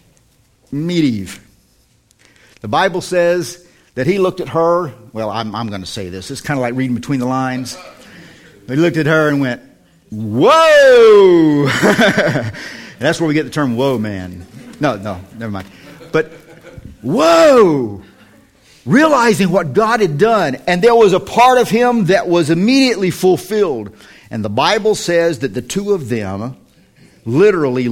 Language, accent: English, American